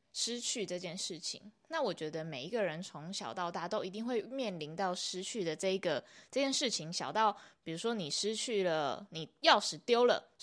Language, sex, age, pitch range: Chinese, female, 20-39, 180-235 Hz